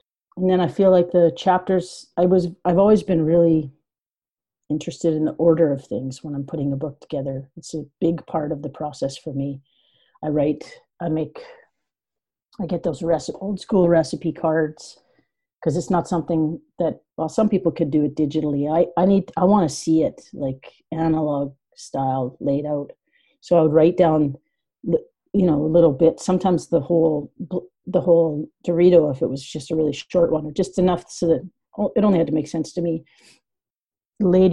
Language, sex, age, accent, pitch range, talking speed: English, female, 40-59, American, 150-180 Hz, 190 wpm